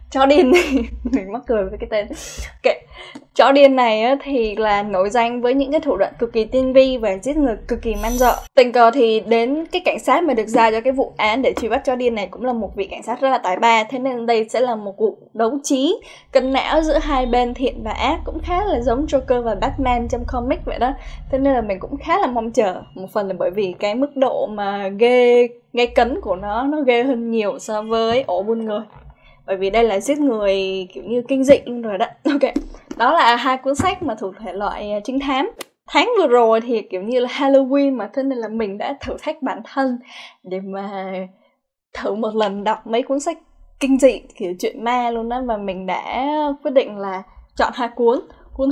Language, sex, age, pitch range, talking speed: Vietnamese, female, 10-29, 220-275 Hz, 235 wpm